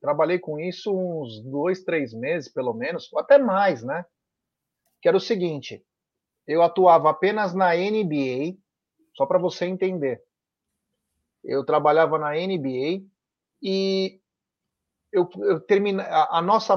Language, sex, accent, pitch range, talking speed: Portuguese, male, Brazilian, 160-205 Hz, 120 wpm